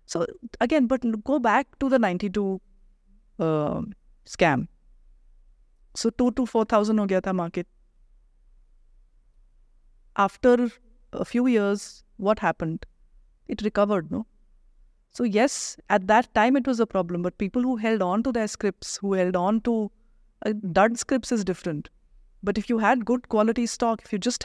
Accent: native